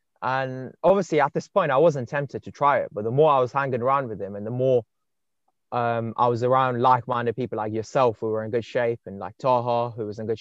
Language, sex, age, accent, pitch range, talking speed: English, male, 20-39, British, 115-140 Hz, 250 wpm